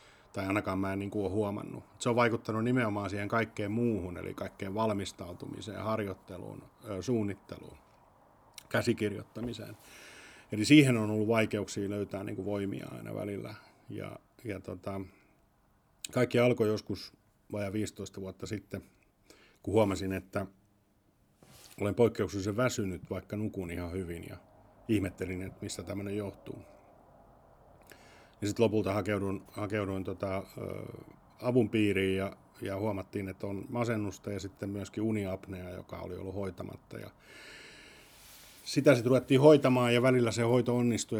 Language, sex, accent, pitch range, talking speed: Finnish, male, native, 95-110 Hz, 130 wpm